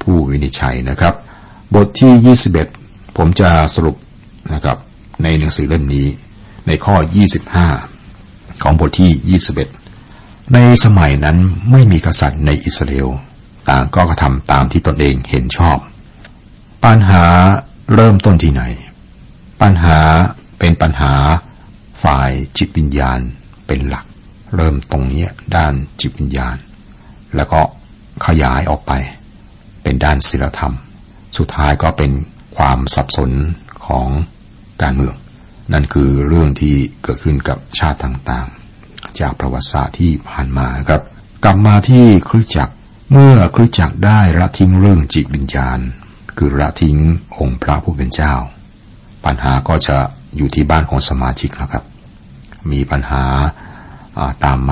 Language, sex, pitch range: Thai, male, 70-95 Hz